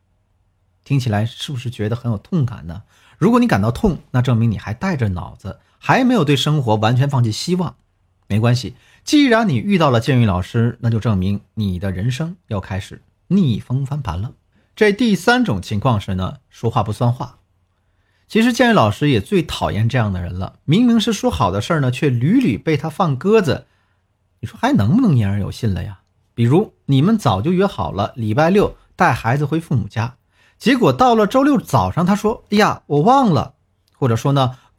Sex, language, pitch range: male, Chinese, 100-160 Hz